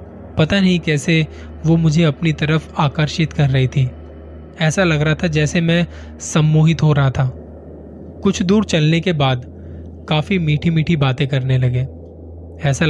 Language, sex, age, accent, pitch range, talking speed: Hindi, male, 20-39, native, 125-160 Hz, 155 wpm